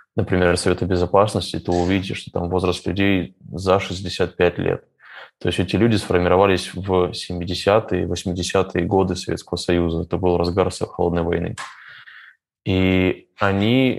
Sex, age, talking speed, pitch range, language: male, 20-39, 130 wpm, 90-105 Hz, Russian